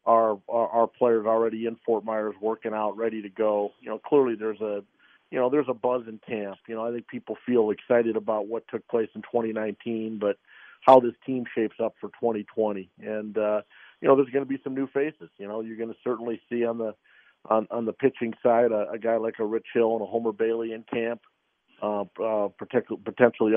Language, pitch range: English, 110-125 Hz